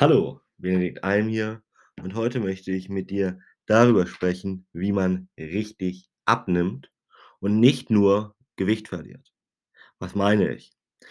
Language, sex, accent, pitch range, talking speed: German, male, German, 95-110 Hz, 130 wpm